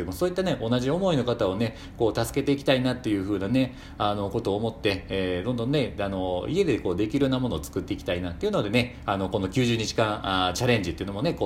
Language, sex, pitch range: Japanese, male, 90-140 Hz